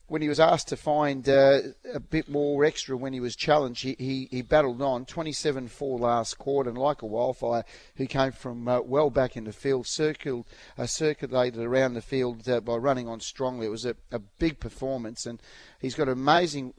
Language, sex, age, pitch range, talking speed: English, male, 40-59, 115-140 Hz, 205 wpm